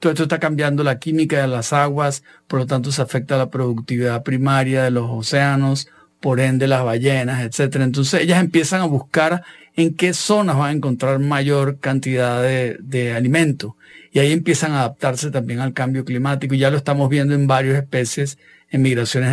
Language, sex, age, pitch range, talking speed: English, male, 50-69, 130-160 Hz, 185 wpm